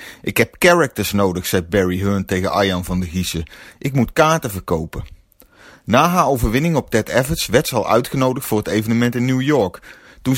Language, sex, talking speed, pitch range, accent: Dutch, male, 190 wpm, 100-140 Hz, Dutch